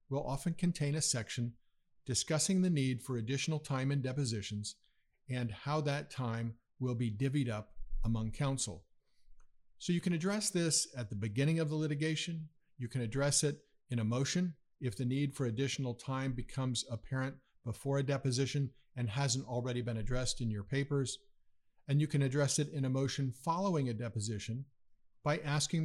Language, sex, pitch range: English, male, 120-145 Hz